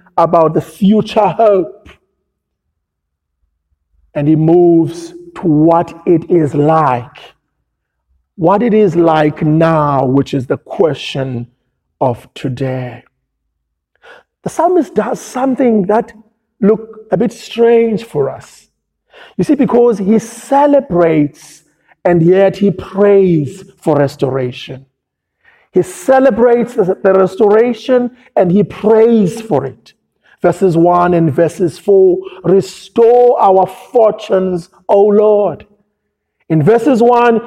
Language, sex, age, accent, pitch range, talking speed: English, male, 50-69, Nigerian, 140-210 Hz, 105 wpm